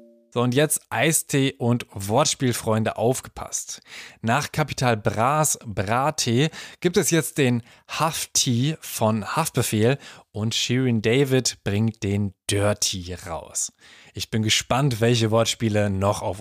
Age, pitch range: 20-39, 110-140 Hz